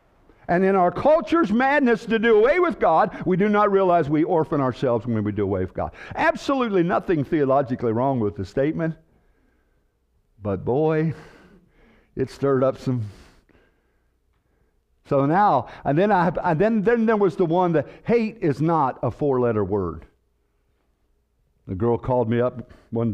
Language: English